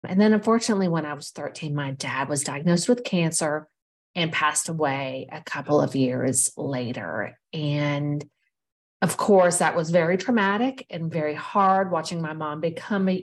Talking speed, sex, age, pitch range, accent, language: 160 wpm, female, 40-59, 150-185 Hz, American, English